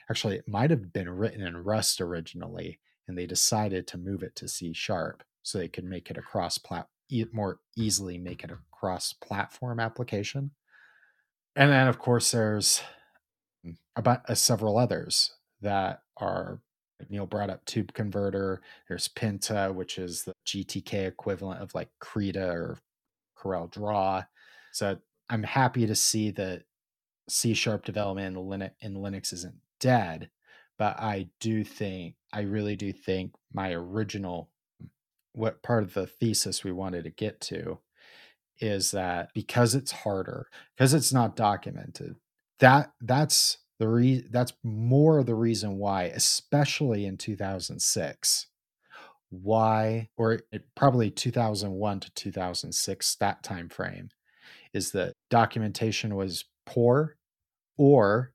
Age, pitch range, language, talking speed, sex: 30-49, 95-115 Hz, English, 135 wpm, male